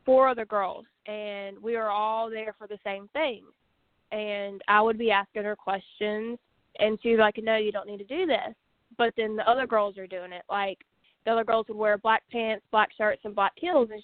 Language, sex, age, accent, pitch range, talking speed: English, female, 20-39, American, 200-225 Hz, 220 wpm